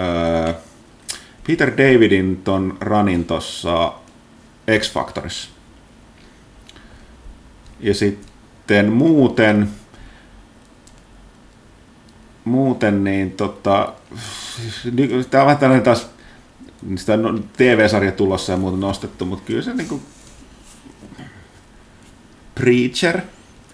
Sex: male